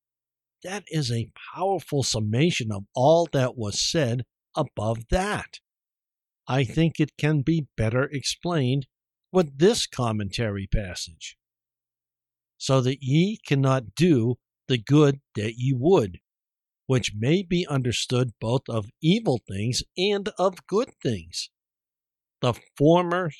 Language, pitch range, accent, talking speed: English, 105-155 Hz, American, 120 wpm